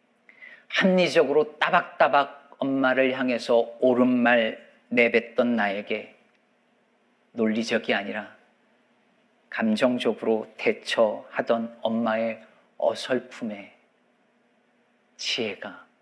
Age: 40-59